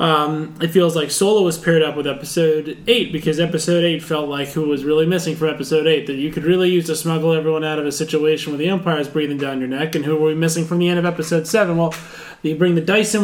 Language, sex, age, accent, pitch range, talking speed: English, male, 20-39, American, 155-185 Hz, 270 wpm